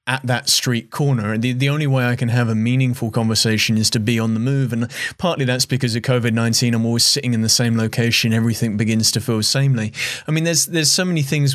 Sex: male